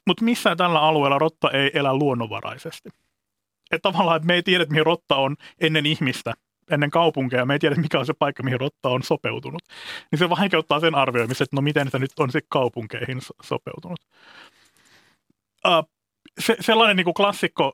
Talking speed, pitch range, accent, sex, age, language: 175 wpm, 125-160 Hz, native, male, 30-49, Finnish